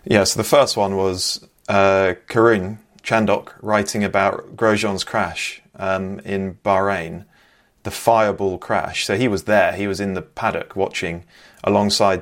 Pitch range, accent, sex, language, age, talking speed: 95-110 Hz, British, male, English, 30-49, 145 wpm